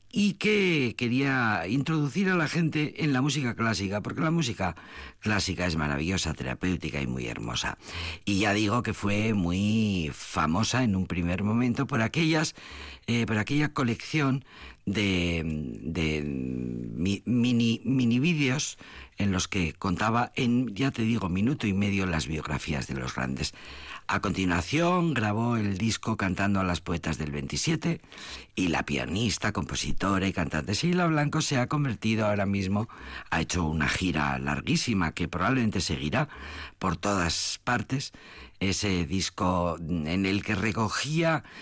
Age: 50-69